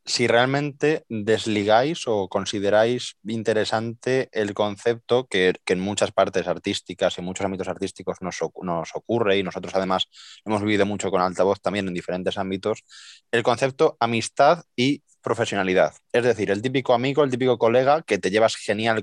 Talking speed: 160 wpm